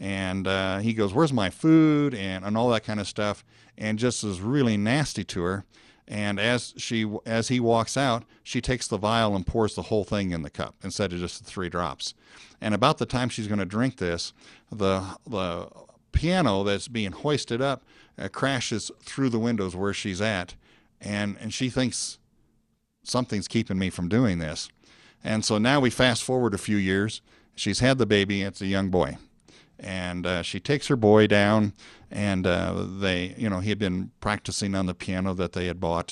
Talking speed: 200 wpm